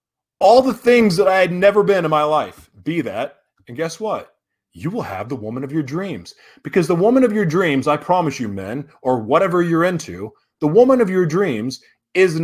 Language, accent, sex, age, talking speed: English, American, male, 30-49, 210 wpm